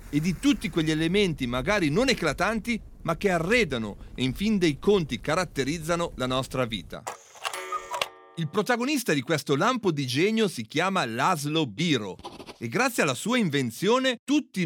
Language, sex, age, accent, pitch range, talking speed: Italian, male, 40-59, native, 140-230 Hz, 150 wpm